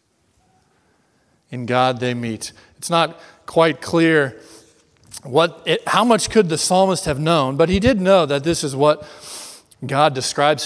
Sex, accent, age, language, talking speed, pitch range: male, American, 40-59, English, 150 wpm, 140-175 Hz